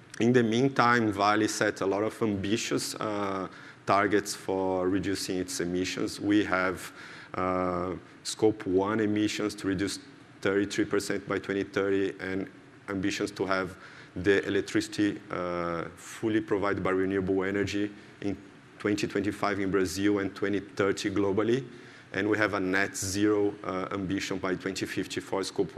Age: 30-49